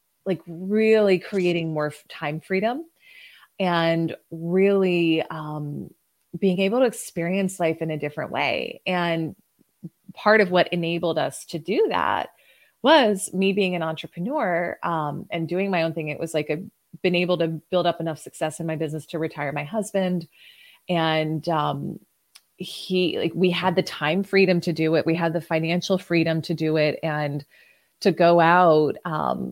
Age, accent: 20-39, American